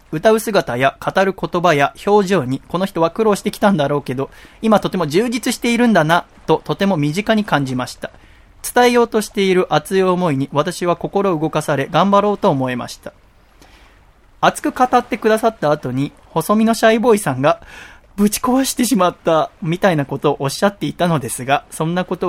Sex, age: male, 20-39